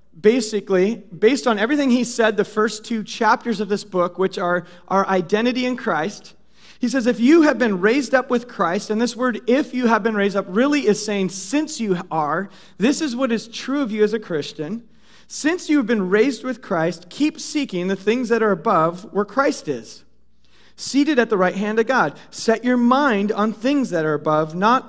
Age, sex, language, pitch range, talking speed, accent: 40-59, male, English, 200-260 Hz, 205 wpm, American